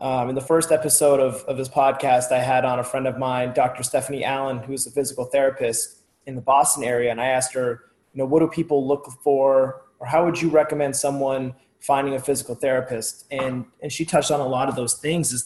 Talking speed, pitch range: 230 wpm, 125-150 Hz